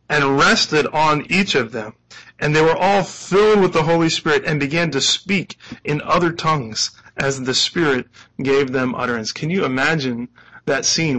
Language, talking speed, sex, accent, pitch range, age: English, 175 wpm, male, American, 140-180 Hz, 30-49